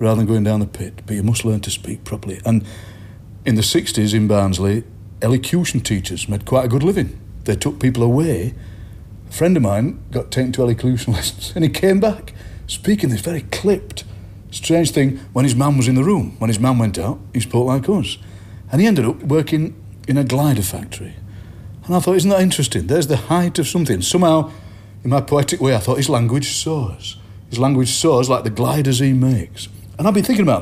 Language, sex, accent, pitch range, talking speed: English, male, British, 100-130 Hz, 210 wpm